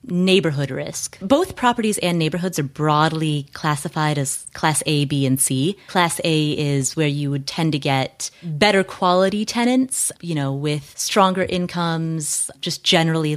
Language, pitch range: English, 145-185 Hz